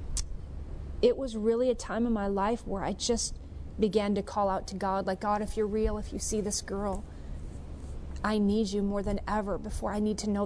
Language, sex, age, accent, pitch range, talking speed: English, female, 30-49, American, 195-235 Hz, 220 wpm